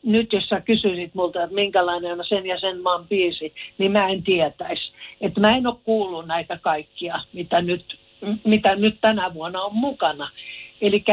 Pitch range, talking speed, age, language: 175-240 Hz, 175 wpm, 60-79, Finnish